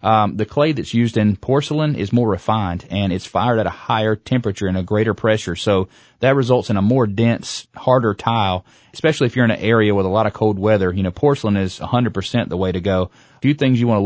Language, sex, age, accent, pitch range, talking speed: English, male, 30-49, American, 100-120 Hz, 250 wpm